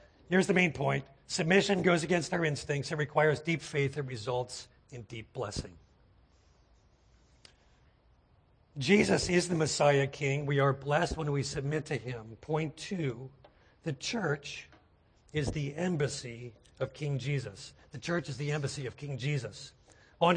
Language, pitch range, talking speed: English, 125-160 Hz, 145 wpm